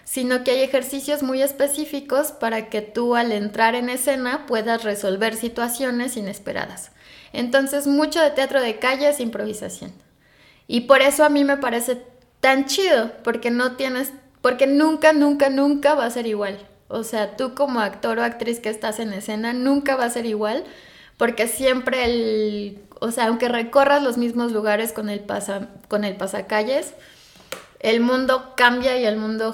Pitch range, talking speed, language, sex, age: 220-265 Hz, 165 wpm, Spanish, female, 20-39